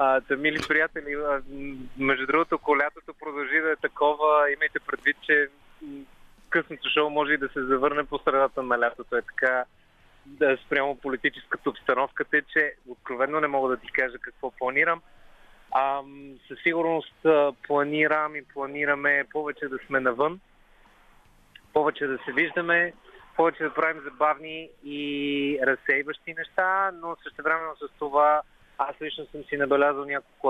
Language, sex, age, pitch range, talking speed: Bulgarian, male, 30-49, 135-160 Hz, 140 wpm